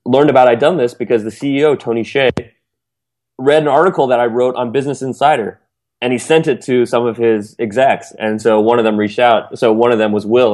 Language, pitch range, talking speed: English, 110-140 Hz, 235 wpm